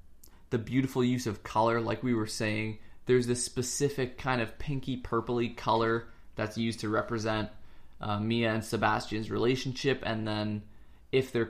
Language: English